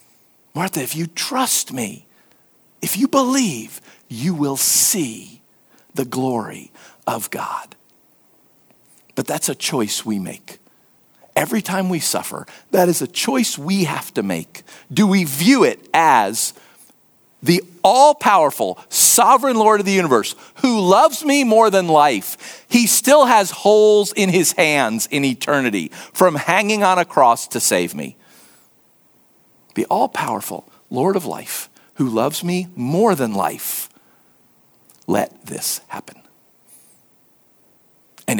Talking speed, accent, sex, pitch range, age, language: 130 wpm, American, male, 130-205 Hz, 50-69, English